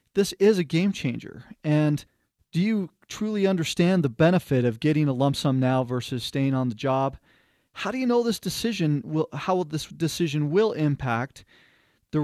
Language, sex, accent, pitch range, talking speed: English, male, American, 135-165 Hz, 180 wpm